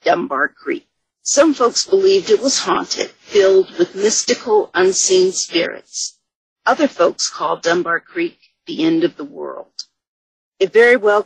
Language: English